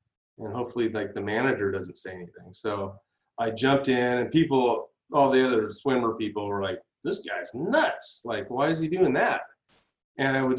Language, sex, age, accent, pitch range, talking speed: English, male, 30-49, American, 110-140 Hz, 185 wpm